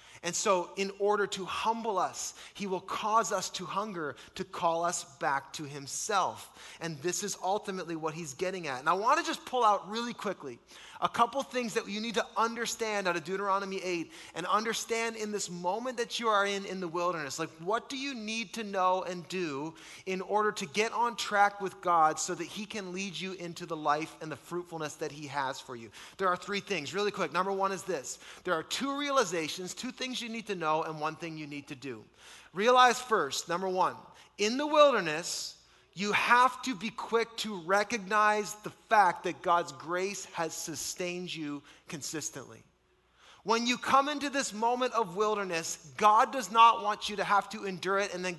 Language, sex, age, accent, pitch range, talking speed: English, male, 30-49, American, 175-220 Hz, 205 wpm